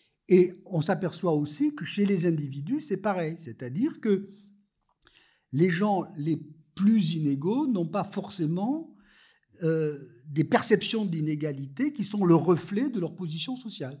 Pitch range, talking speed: 135-200 Hz, 135 wpm